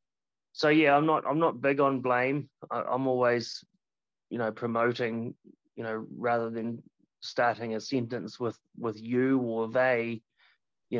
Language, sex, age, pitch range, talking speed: English, male, 20-39, 115-135 Hz, 155 wpm